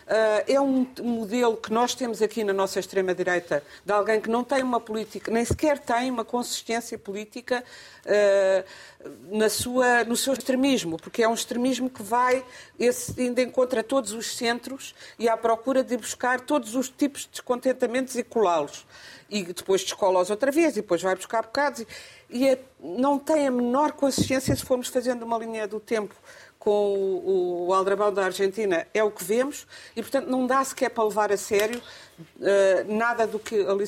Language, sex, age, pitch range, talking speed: Portuguese, female, 50-69, 190-250 Hz, 180 wpm